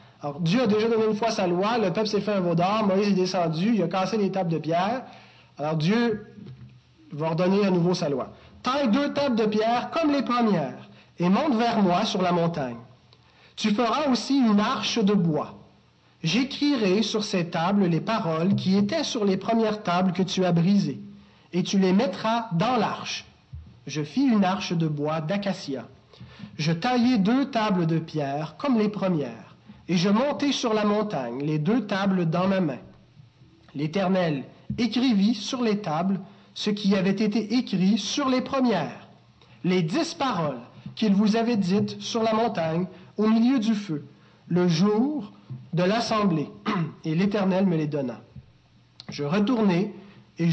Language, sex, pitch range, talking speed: French, male, 170-225 Hz, 170 wpm